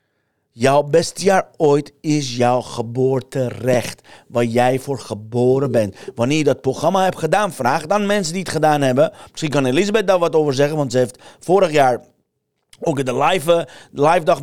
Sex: male